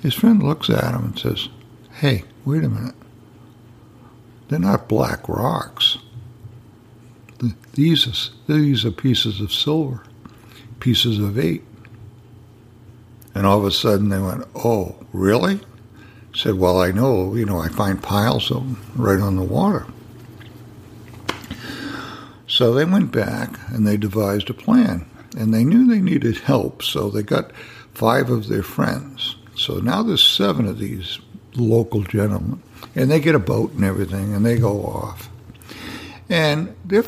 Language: English